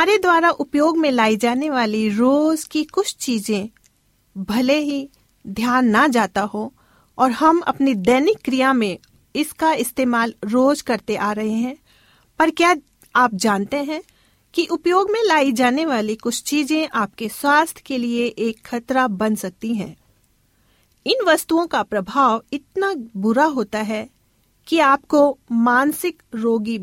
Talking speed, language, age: 145 wpm, Hindi, 40-59